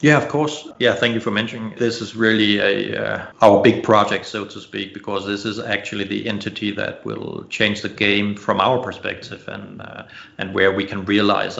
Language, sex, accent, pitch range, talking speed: English, male, Danish, 100-110 Hz, 205 wpm